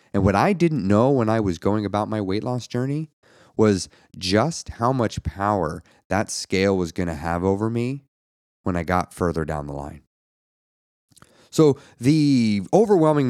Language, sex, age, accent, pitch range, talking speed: English, male, 30-49, American, 85-120 Hz, 165 wpm